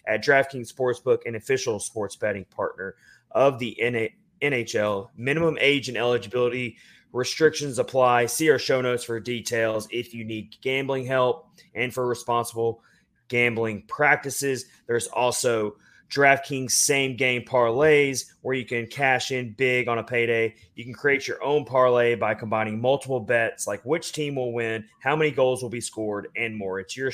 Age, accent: 30-49, American